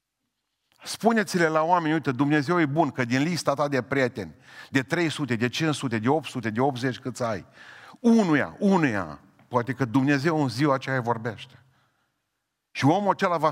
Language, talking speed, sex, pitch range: Romanian, 170 wpm, male, 115-150 Hz